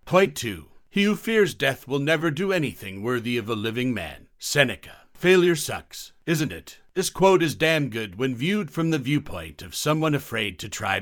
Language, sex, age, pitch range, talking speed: Hindi, male, 50-69, 110-155 Hz, 190 wpm